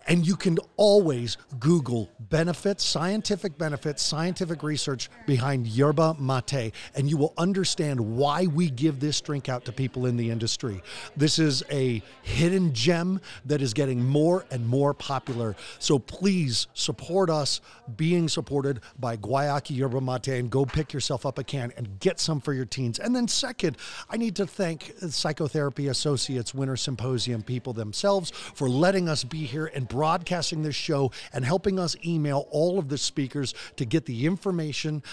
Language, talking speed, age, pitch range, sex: English, 165 wpm, 40-59, 130-165 Hz, male